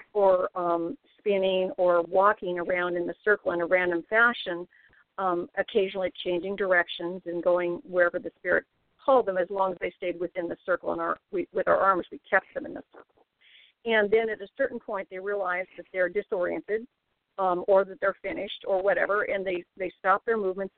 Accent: American